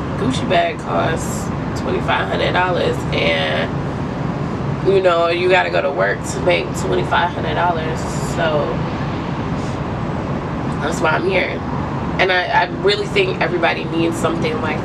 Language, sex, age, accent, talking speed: English, female, 20-39, American, 115 wpm